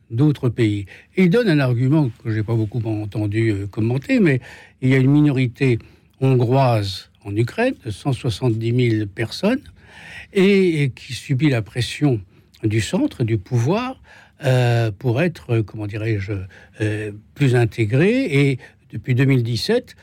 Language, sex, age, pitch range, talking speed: French, male, 60-79, 105-135 Hz, 140 wpm